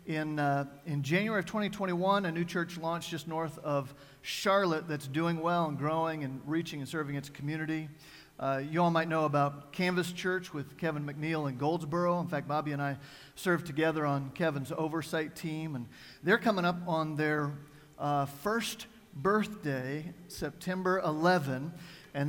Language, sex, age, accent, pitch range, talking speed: English, male, 50-69, American, 155-195 Hz, 165 wpm